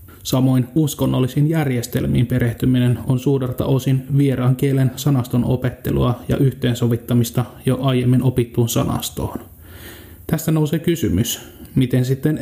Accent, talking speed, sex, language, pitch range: native, 105 wpm, male, Finnish, 120-135 Hz